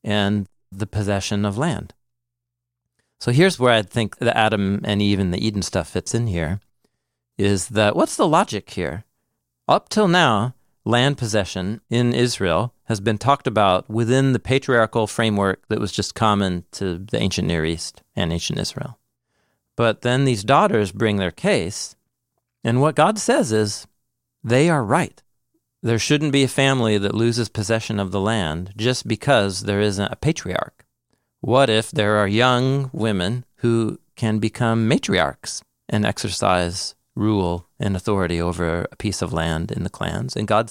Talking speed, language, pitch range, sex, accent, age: 165 wpm, English, 100-125 Hz, male, American, 40-59